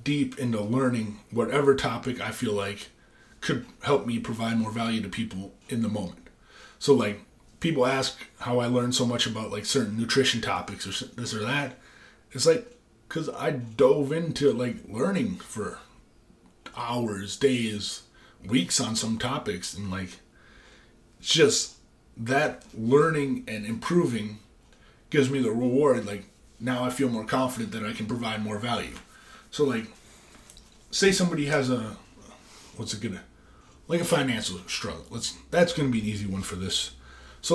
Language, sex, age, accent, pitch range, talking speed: English, male, 30-49, American, 110-135 Hz, 155 wpm